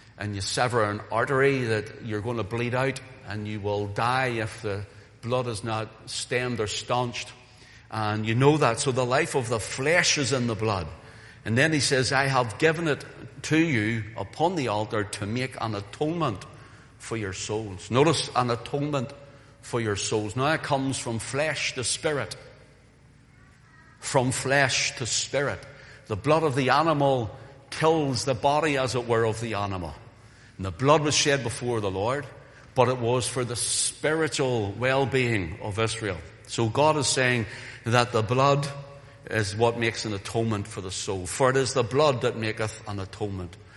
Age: 60-79